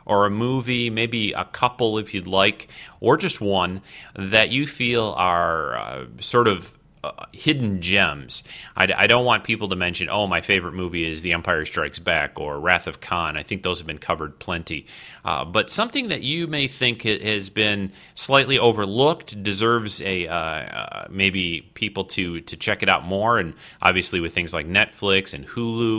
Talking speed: 185 wpm